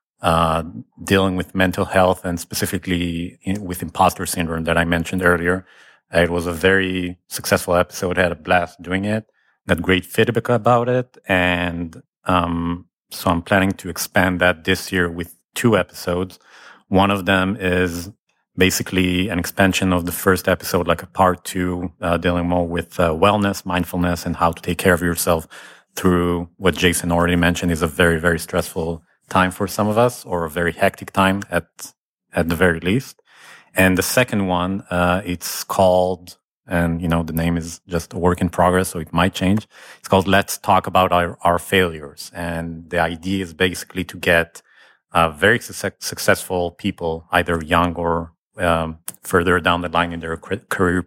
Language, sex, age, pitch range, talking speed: English, male, 40-59, 85-95 Hz, 180 wpm